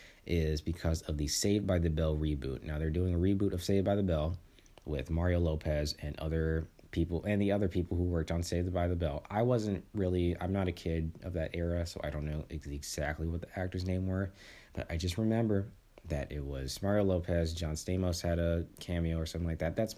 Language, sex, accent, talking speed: English, male, American, 225 wpm